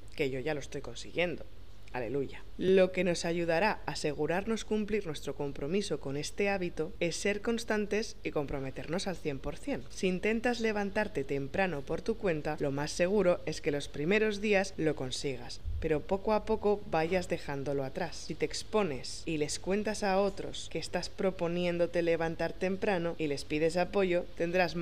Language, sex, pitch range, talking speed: Spanish, female, 150-195 Hz, 165 wpm